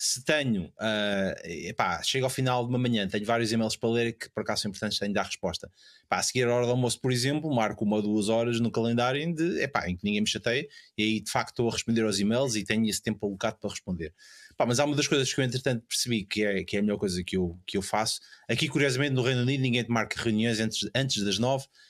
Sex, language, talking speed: male, Portuguese, 245 wpm